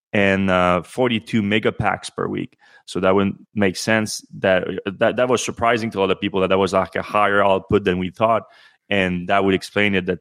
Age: 30-49